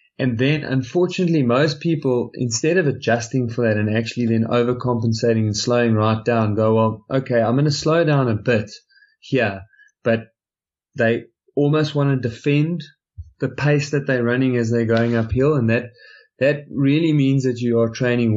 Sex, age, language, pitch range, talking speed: male, 20-39, English, 110-130 Hz, 175 wpm